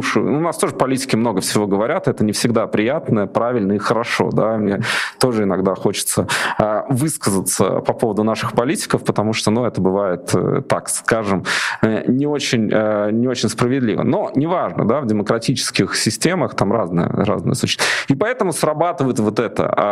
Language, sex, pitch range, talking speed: Russian, male, 105-140 Hz, 155 wpm